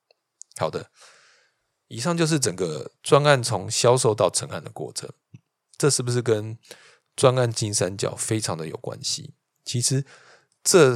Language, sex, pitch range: Chinese, male, 105-130 Hz